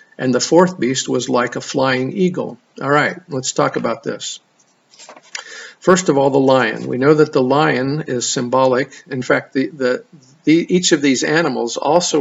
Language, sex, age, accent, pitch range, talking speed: English, male, 50-69, American, 125-150 Hz, 165 wpm